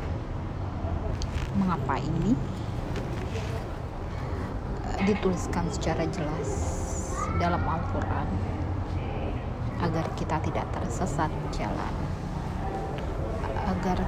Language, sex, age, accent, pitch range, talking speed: Indonesian, female, 30-49, native, 85-105 Hz, 55 wpm